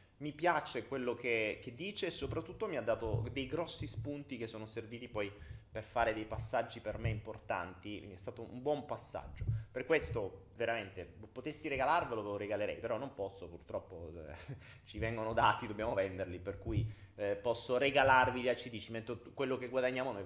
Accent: native